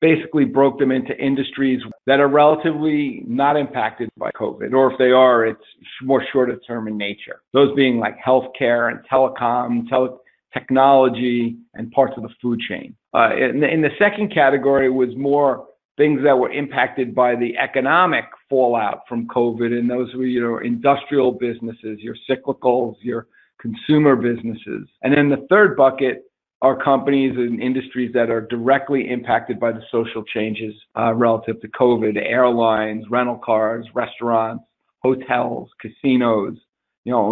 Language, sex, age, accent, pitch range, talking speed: English, male, 50-69, American, 120-140 Hz, 155 wpm